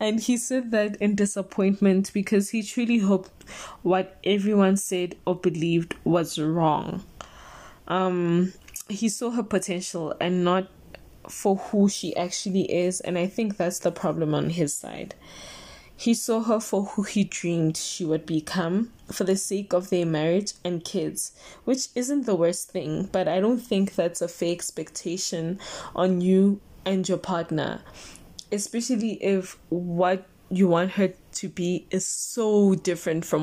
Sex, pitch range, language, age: female, 170-200 Hz, English, 10-29